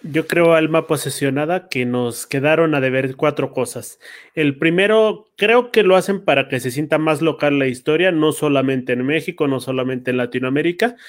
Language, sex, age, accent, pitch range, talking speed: Spanish, male, 30-49, Mexican, 140-185 Hz, 180 wpm